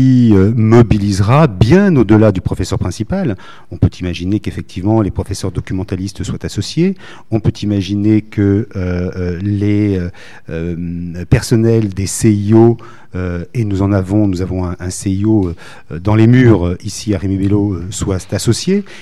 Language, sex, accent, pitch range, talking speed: French, male, French, 95-115 Hz, 140 wpm